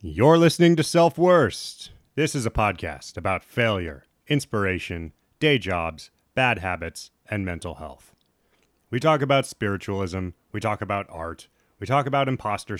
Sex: male